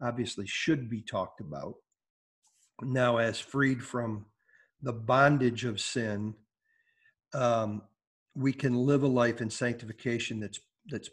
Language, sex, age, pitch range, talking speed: English, male, 50-69, 115-140 Hz, 125 wpm